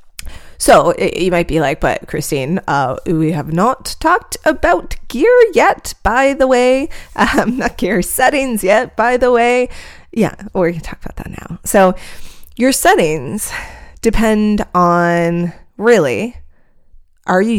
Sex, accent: female, American